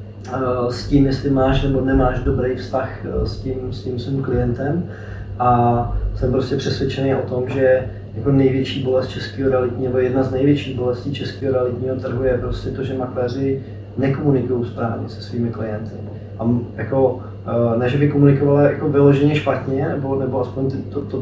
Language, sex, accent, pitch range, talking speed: Czech, male, native, 120-135 Hz, 155 wpm